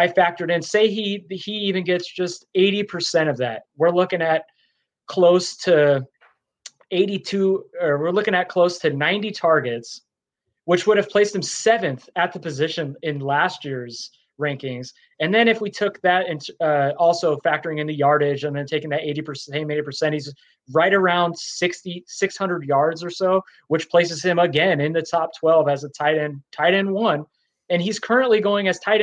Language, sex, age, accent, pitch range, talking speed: English, male, 20-39, American, 150-185 Hz, 180 wpm